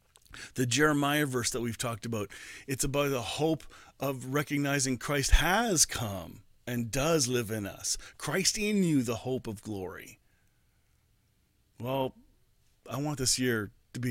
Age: 40-59